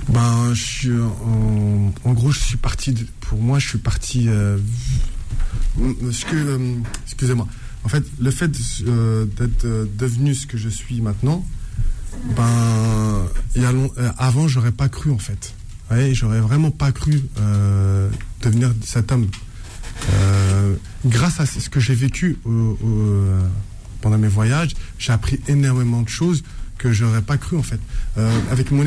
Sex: male